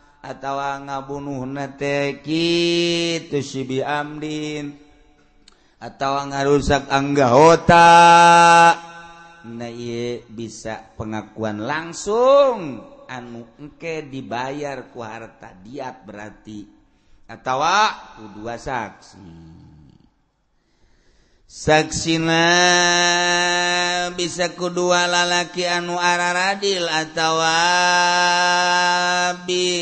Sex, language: male, Indonesian